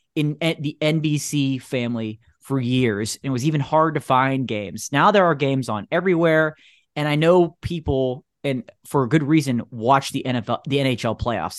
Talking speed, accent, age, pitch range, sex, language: 180 wpm, American, 30-49, 125-170 Hz, male, English